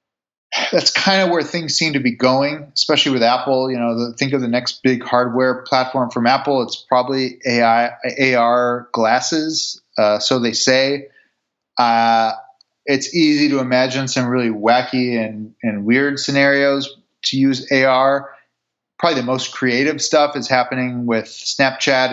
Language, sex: English, male